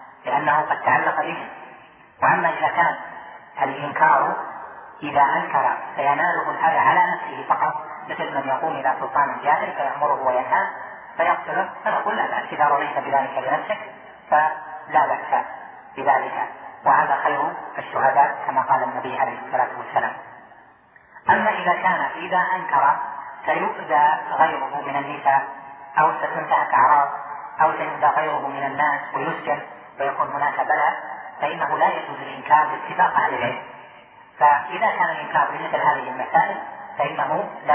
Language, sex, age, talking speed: Arabic, female, 30-49, 130 wpm